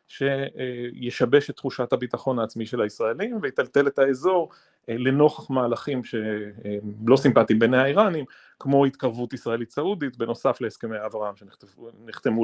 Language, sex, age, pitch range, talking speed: Hebrew, male, 30-49, 115-155 Hz, 115 wpm